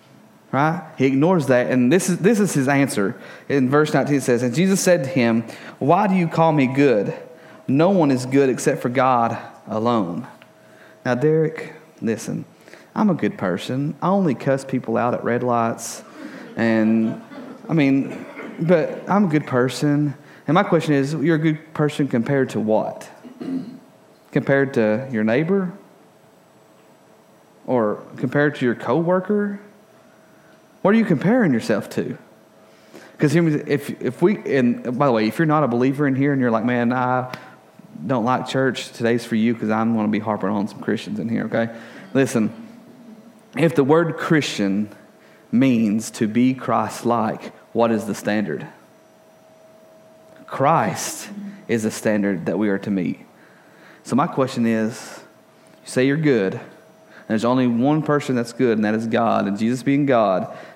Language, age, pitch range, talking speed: English, 30-49, 115-165 Hz, 165 wpm